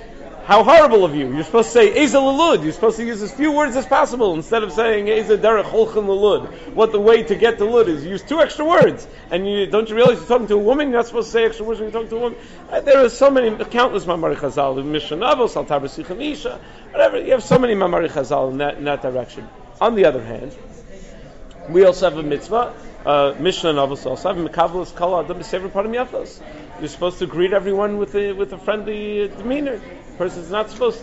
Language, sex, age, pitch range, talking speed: English, male, 40-59, 175-230 Hz, 230 wpm